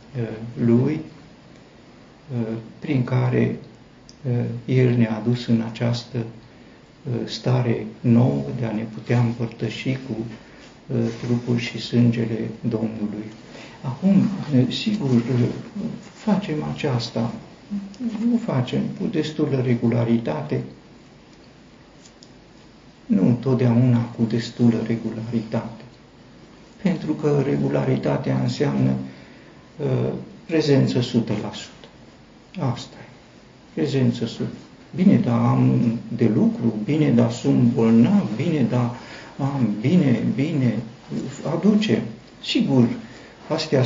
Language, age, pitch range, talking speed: Romanian, 50-69, 115-140 Hz, 85 wpm